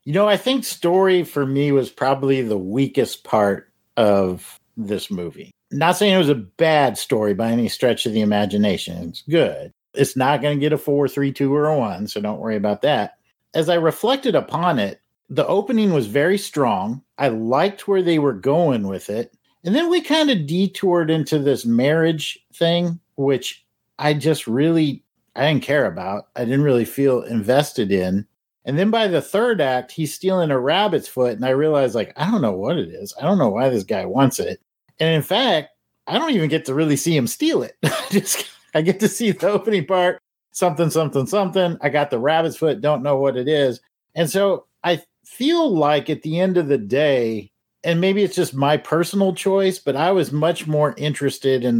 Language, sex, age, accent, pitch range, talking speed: English, male, 50-69, American, 130-180 Hz, 205 wpm